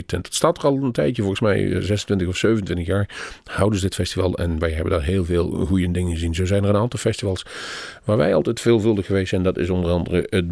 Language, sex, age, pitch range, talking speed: Dutch, male, 50-69, 90-105 Hz, 245 wpm